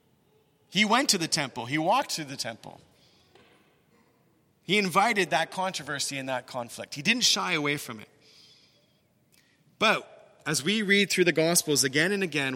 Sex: male